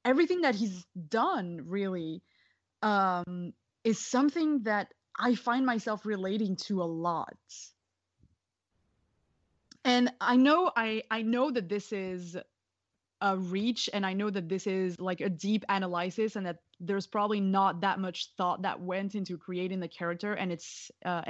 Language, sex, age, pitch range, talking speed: English, female, 20-39, 175-215 Hz, 150 wpm